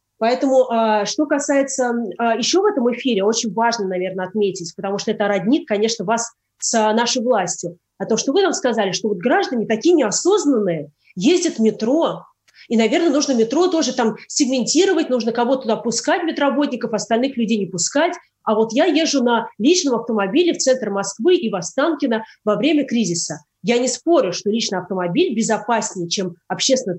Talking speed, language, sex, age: 165 wpm, Russian, female, 20-39